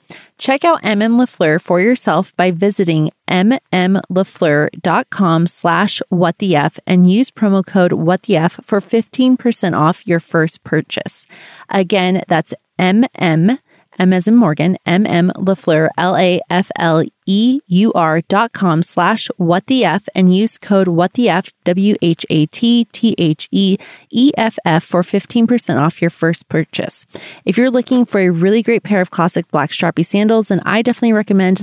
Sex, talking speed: female, 155 wpm